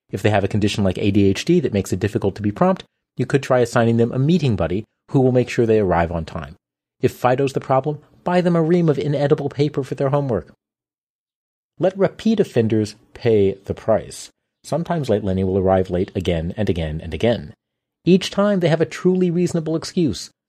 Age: 40-59